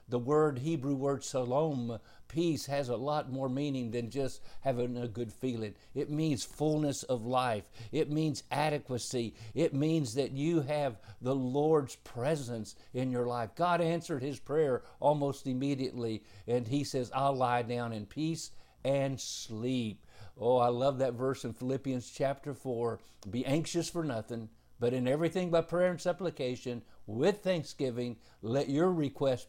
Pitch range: 115-140 Hz